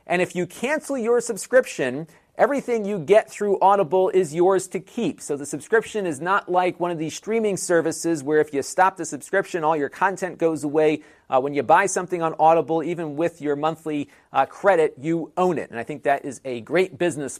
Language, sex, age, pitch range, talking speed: English, male, 40-59, 145-195 Hz, 210 wpm